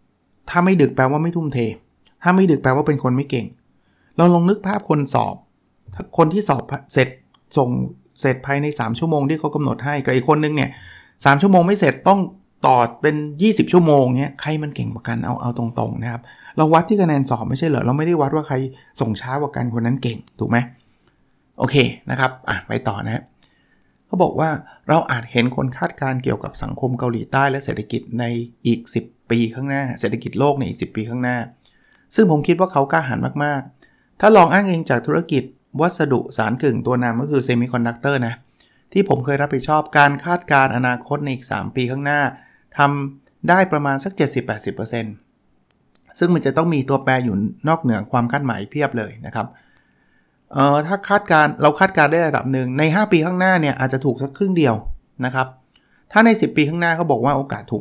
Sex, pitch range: male, 120-155 Hz